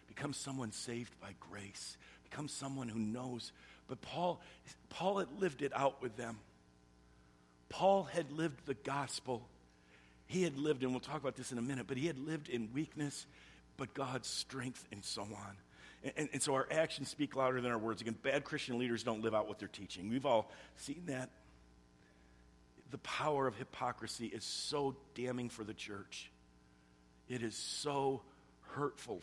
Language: English